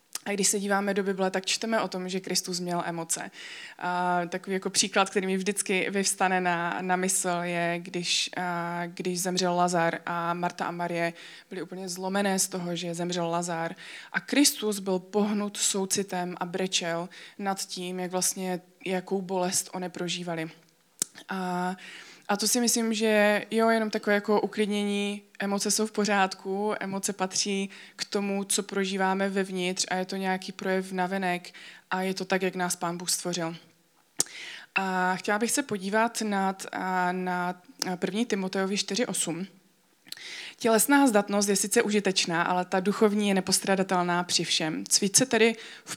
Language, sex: Czech, female